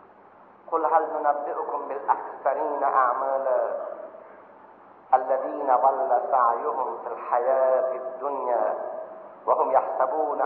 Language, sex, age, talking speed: Persian, male, 50-69, 80 wpm